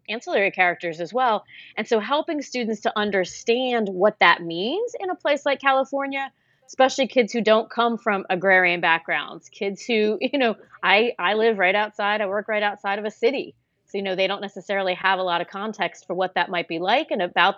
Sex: female